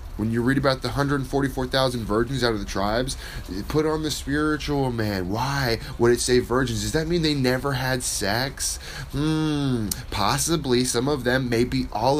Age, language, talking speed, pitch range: 10-29, English, 170 wpm, 100-130 Hz